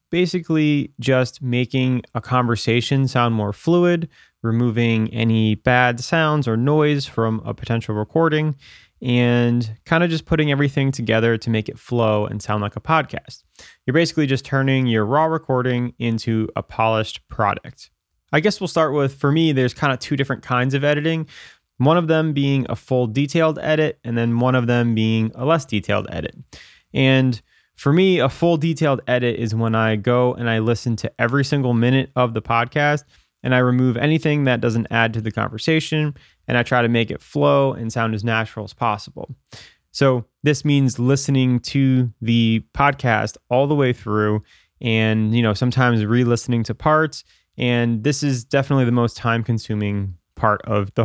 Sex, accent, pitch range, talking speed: male, American, 115-140 Hz, 175 wpm